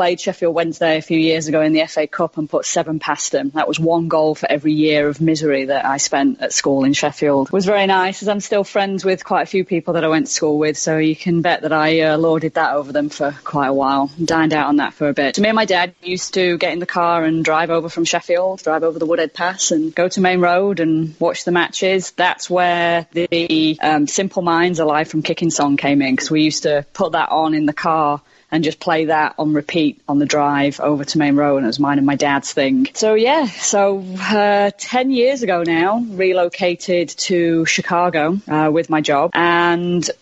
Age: 30-49